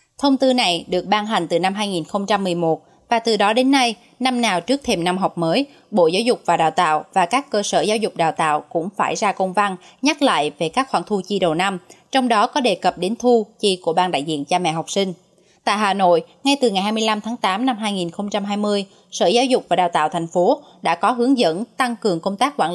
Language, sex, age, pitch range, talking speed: Vietnamese, female, 20-39, 175-235 Hz, 245 wpm